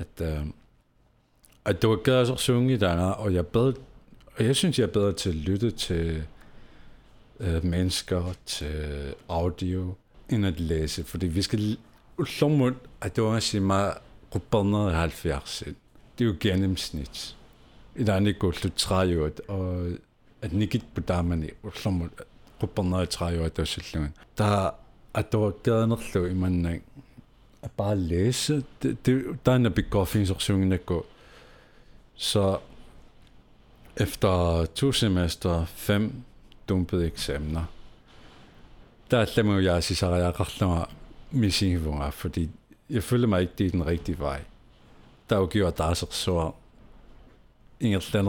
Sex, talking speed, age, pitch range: male, 140 wpm, 60-79, 85-110 Hz